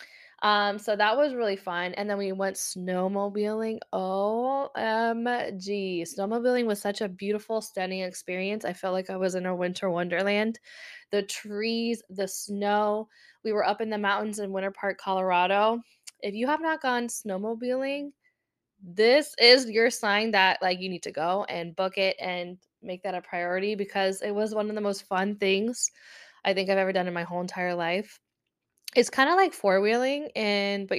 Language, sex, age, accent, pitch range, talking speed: English, female, 10-29, American, 185-220 Hz, 180 wpm